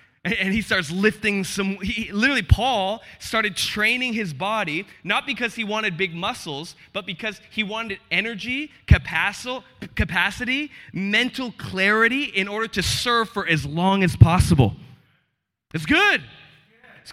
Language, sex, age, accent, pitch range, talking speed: English, male, 20-39, American, 165-210 Hz, 130 wpm